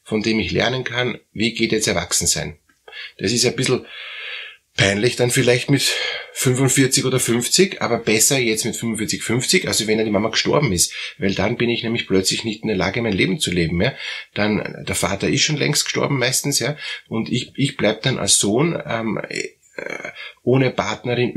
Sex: male